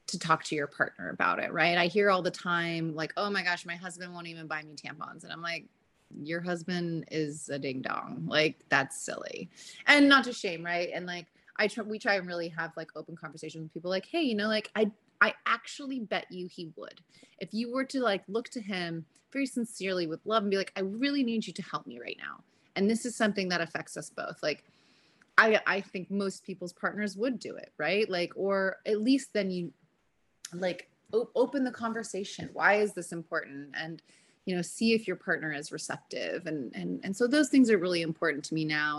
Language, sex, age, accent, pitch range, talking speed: English, female, 30-49, American, 160-200 Hz, 225 wpm